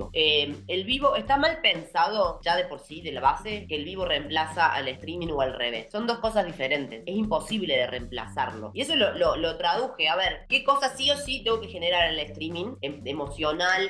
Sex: female